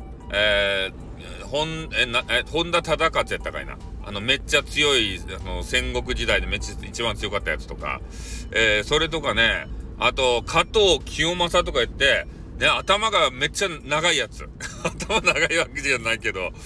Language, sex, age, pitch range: Japanese, male, 40-59, 100-150 Hz